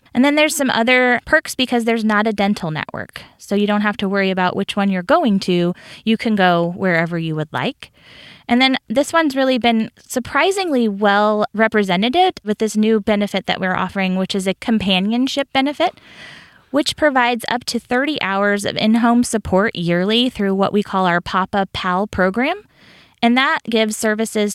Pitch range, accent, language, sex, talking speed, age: 185-235 Hz, American, English, female, 180 wpm, 20-39